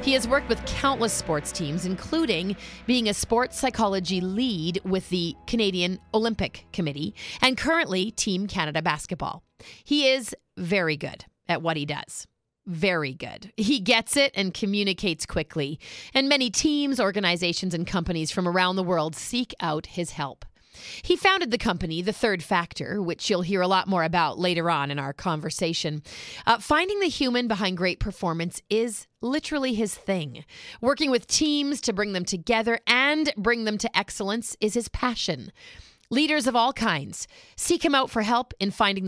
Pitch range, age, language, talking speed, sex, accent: 175-235 Hz, 30-49, English, 165 wpm, female, American